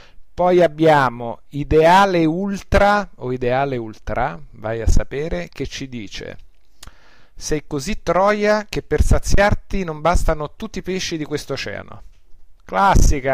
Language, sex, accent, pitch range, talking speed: Italian, male, native, 115-165 Hz, 125 wpm